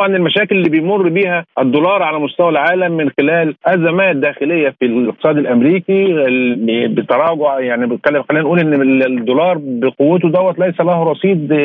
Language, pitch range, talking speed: Arabic, 130-175 Hz, 145 wpm